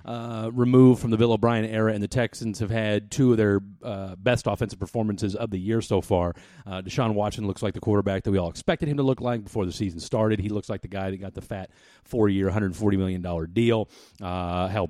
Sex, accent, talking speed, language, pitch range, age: male, American, 235 wpm, English, 95-120 Hz, 30-49